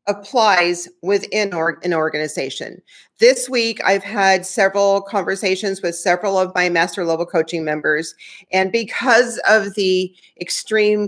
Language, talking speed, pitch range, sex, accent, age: English, 125 wpm, 180-215 Hz, female, American, 40-59